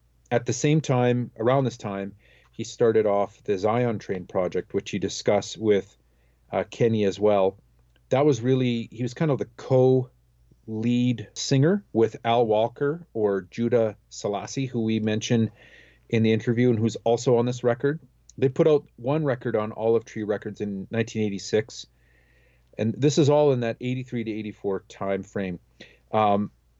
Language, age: English, 40-59